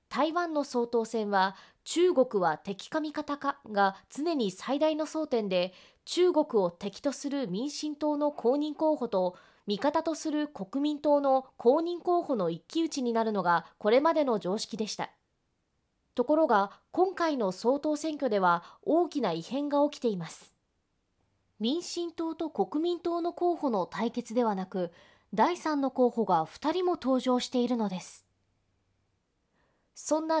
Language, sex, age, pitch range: Japanese, female, 20-39, 205-310 Hz